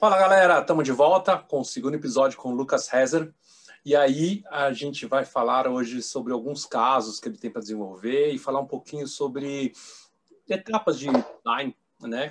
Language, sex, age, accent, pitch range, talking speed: Portuguese, male, 30-49, Brazilian, 120-150 Hz, 180 wpm